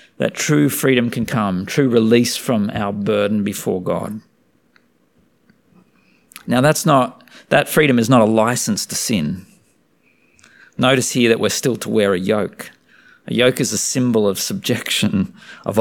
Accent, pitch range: Australian, 110-135 Hz